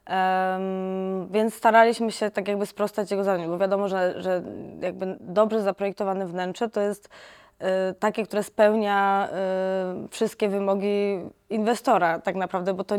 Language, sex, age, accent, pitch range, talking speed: Polish, female, 20-39, native, 185-210 Hz, 145 wpm